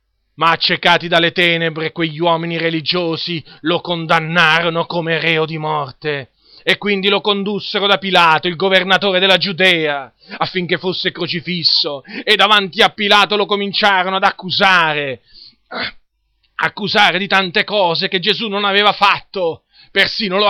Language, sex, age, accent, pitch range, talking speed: Italian, male, 40-59, native, 160-195 Hz, 130 wpm